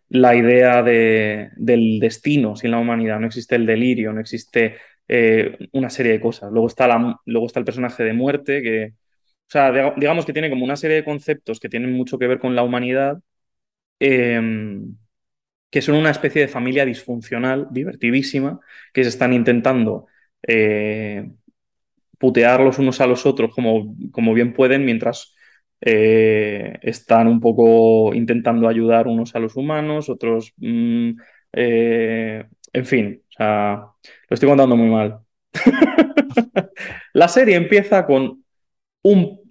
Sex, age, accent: male, 20-39, Spanish